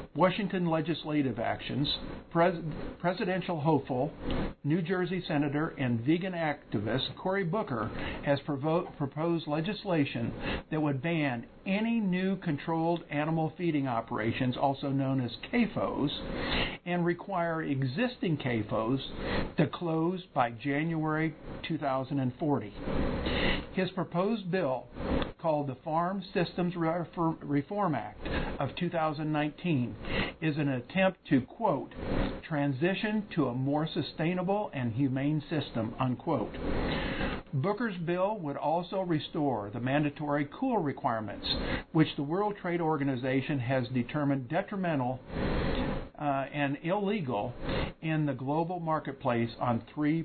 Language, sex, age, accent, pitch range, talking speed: English, male, 50-69, American, 135-175 Hz, 105 wpm